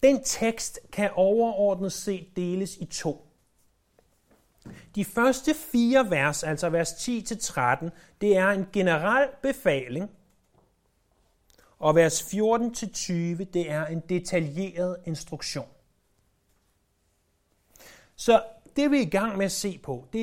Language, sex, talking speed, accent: Danish, male, 130 wpm, native